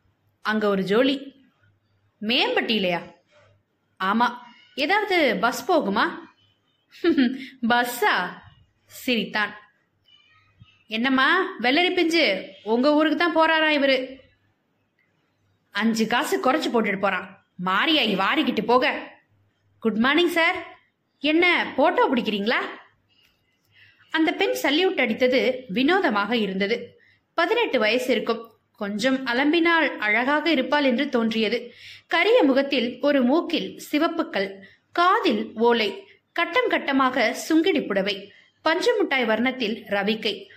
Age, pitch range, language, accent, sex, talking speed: 20-39, 215-310 Hz, Tamil, native, female, 90 wpm